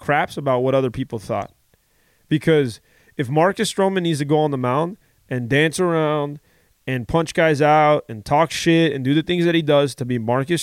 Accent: American